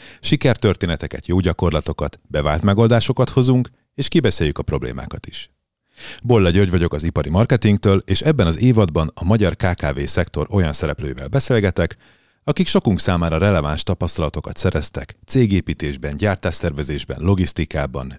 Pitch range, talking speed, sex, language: 80-110 Hz, 120 wpm, male, Hungarian